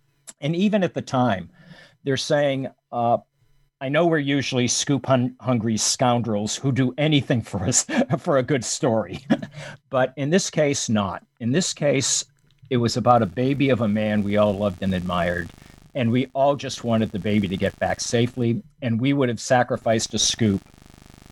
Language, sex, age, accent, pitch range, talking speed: English, male, 50-69, American, 100-135 Hz, 175 wpm